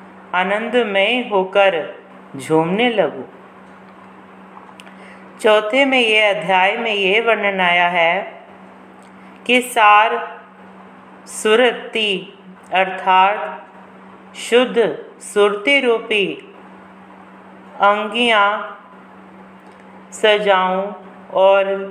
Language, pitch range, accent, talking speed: Hindi, 190-230 Hz, native, 50 wpm